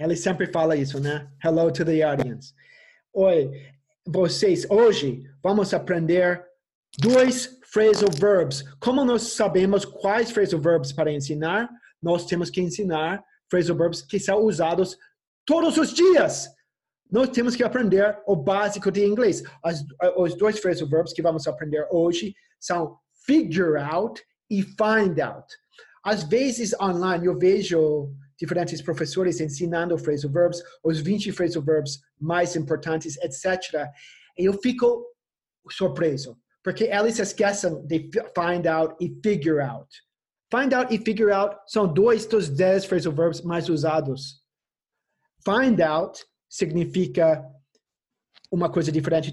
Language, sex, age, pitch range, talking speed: Portuguese, male, 30-49, 160-205 Hz, 130 wpm